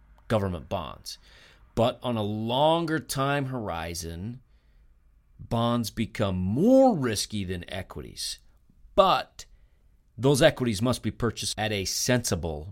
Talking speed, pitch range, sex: 110 wpm, 90-115 Hz, male